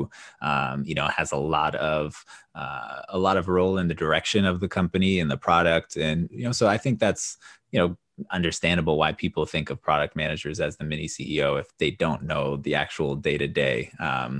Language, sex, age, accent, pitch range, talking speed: English, male, 20-39, American, 75-95 Hz, 200 wpm